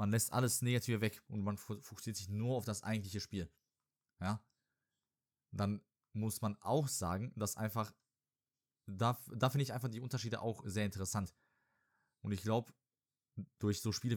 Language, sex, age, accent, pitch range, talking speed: German, male, 20-39, German, 105-125 Hz, 160 wpm